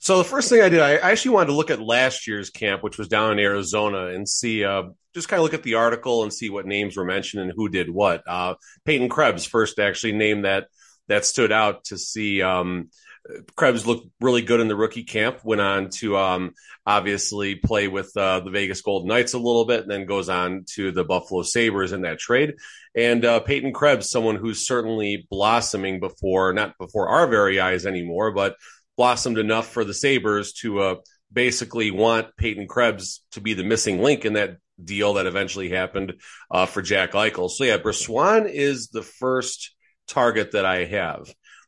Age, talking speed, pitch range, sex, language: 30-49, 200 wpm, 95-115 Hz, male, English